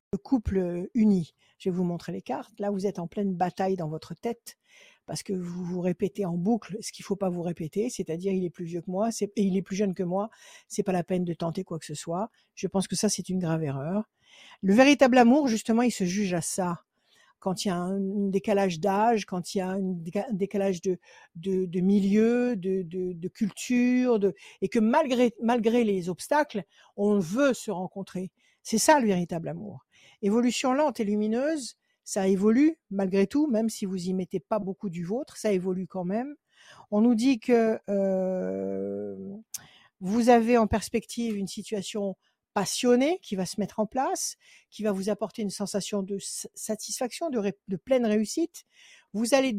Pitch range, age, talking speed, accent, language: 185-235 Hz, 60-79, 200 wpm, French, French